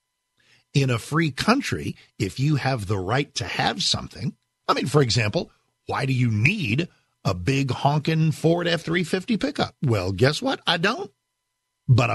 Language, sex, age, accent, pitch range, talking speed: English, male, 50-69, American, 115-155 Hz, 160 wpm